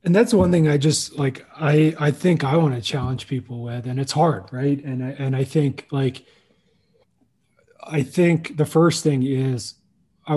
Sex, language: male, English